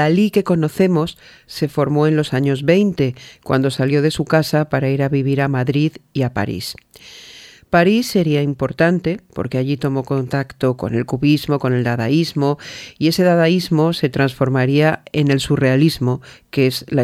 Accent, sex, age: Spanish, female, 40-59